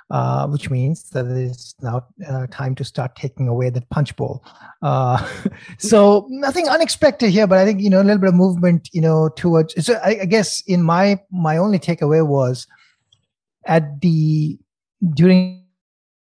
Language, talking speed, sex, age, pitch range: English, 175 wpm, male, 30-49, 140-185 Hz